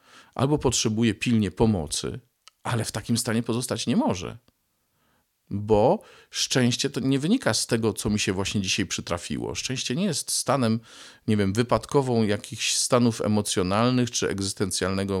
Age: 40-59